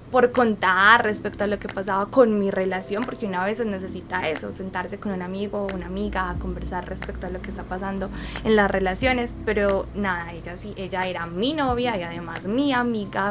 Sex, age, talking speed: female, 10-29, 205 wpm